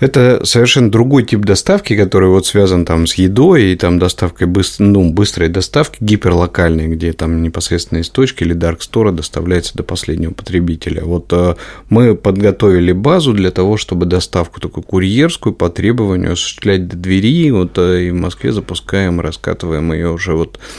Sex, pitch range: male, 90-105 Hz